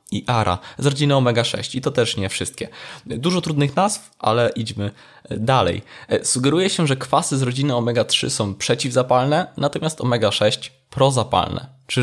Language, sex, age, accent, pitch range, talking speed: Polish, male, 20-39, native, 115-150 Hz, 145 wpm